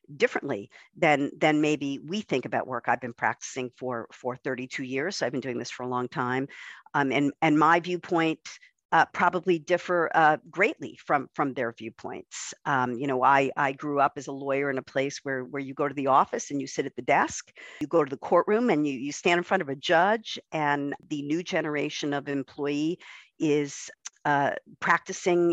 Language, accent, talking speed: English, American, 205 wpm